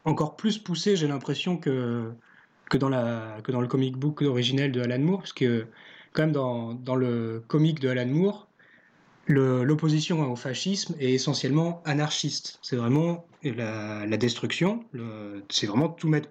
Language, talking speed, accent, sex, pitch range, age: French, 170 wpm, French, male, 125-160 Hz, 20-39